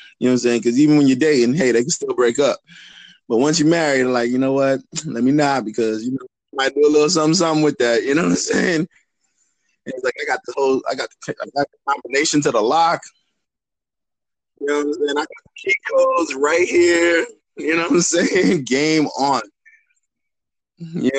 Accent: American